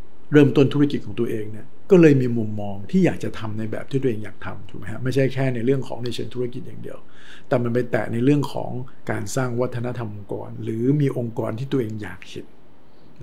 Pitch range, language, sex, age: 110-130 Hz, Thai, male, 60-79